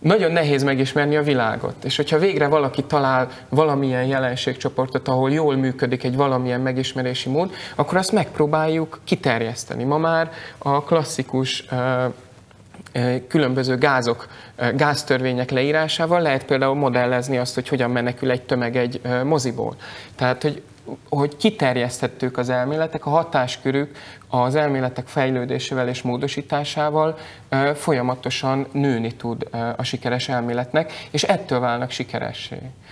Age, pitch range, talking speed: 20-39, 125-150 Hz, 120 wpm